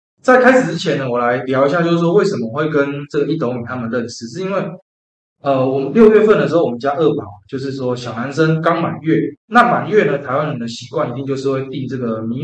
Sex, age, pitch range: male, 20-39, 125-190 Hz